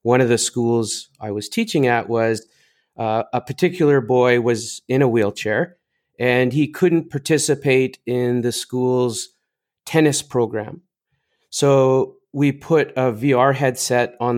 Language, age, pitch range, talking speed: English, 30-49, 120-145 Hz, 140 wpm